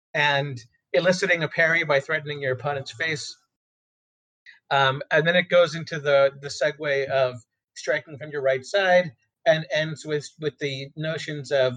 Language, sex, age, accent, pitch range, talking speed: English, male, 40-59, American, 130-165 Hz, 160 wpm